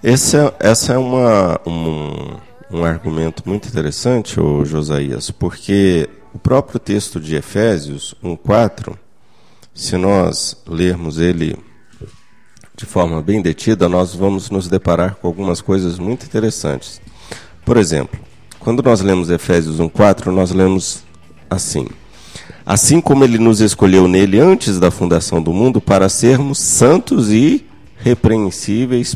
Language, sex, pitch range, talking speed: Portuguese, male, 85-115 Hz, 120 wpm